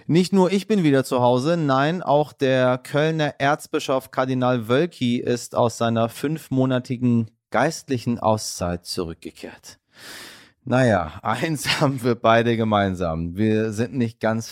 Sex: male